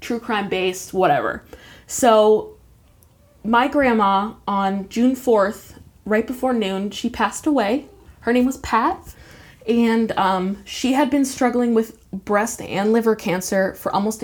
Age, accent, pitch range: 20-39, American, 185-230 Hz